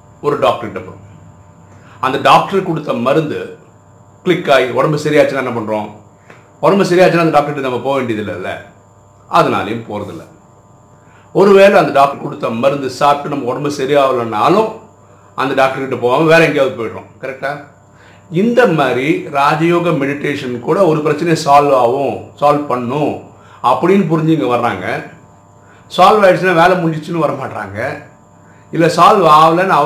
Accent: native